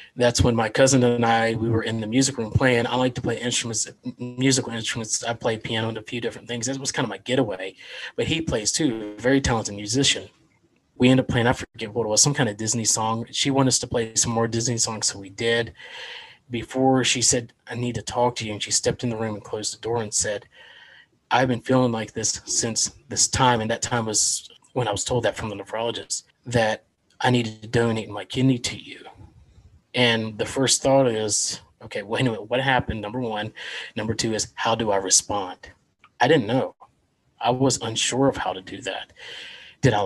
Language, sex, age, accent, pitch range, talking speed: English, male, 30-49, American, 110-130 Hz, 225 wpm